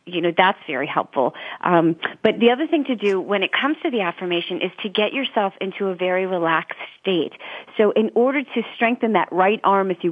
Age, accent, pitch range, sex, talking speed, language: 30-49, American, 185-245 Hz, female, 220 wpm, English